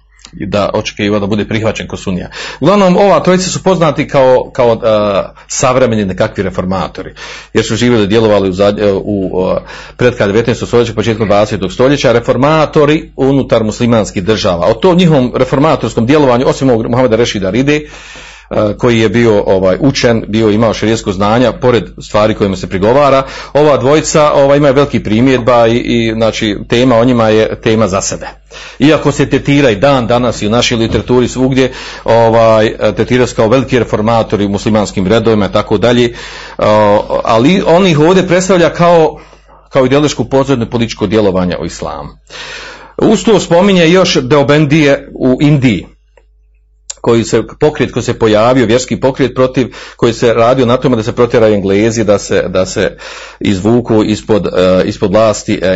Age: 40-59